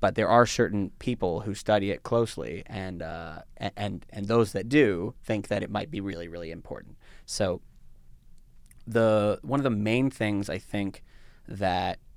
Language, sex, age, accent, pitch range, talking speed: English, male, 30-49, American, 90-110 Hz, 170 wpm